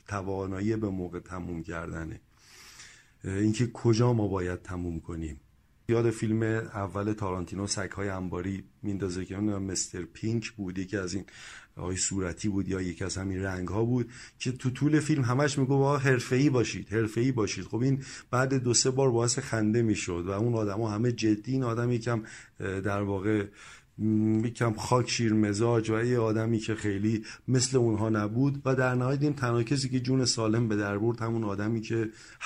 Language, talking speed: Persian, 165 wpm